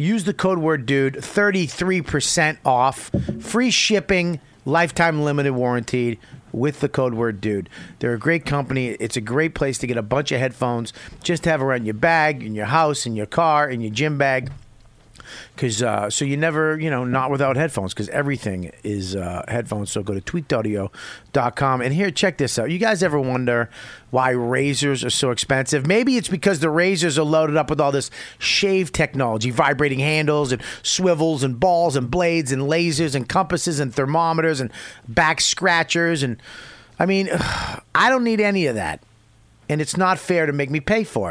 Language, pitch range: English, 125-175 Hz